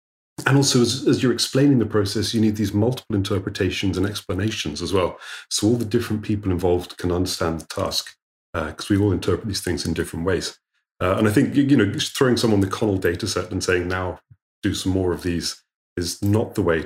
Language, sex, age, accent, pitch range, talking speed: English, male, 30-49, British, 90-120 Hz, 225 wpm